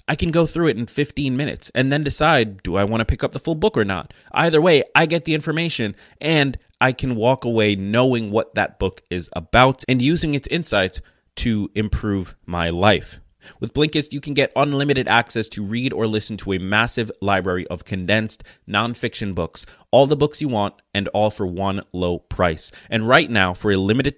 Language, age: English, 30-49